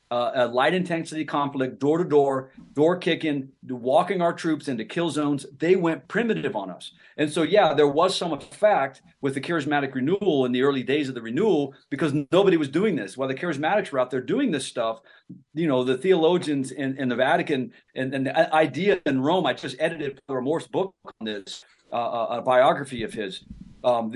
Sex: male